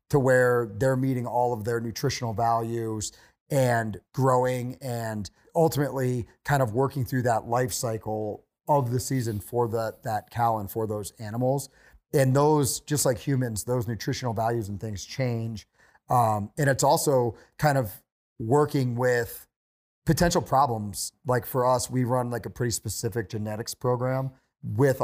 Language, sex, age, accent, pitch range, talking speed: English, male, 30-49, American, 115-135 Hz, 150 wpm